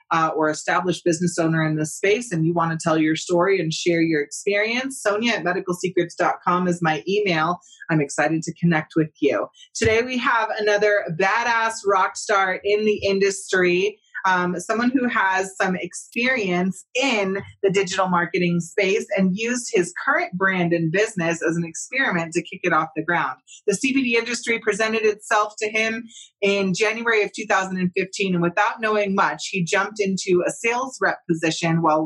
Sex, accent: female, American